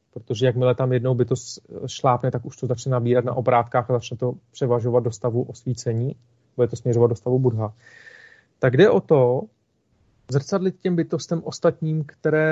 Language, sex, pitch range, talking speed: Czech, male, 125-140 Hz, 175 wpm